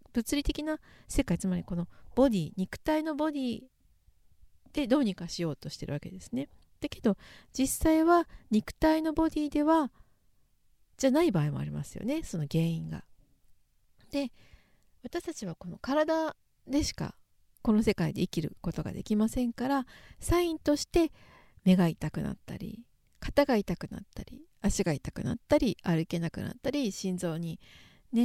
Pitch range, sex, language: 185-285 Hz, female, Japanese